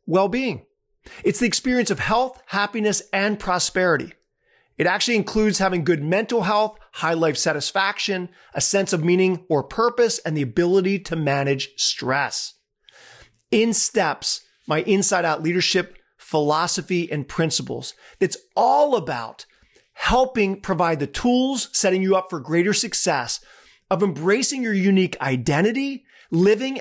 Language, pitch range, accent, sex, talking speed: English, 165-220 Hz, American, male, 130 wpm